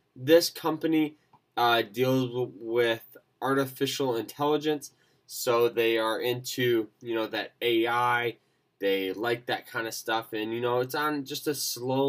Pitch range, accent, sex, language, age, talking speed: 110-135 Hz, American, male, English, 20-39, 145 wpm